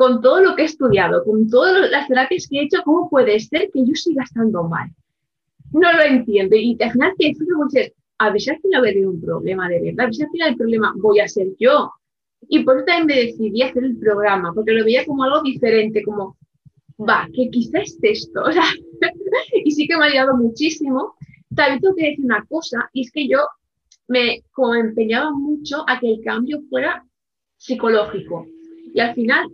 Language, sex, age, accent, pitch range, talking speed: Spanish, female, 20-39, Spanish, 215-295 Hz, 205 wpm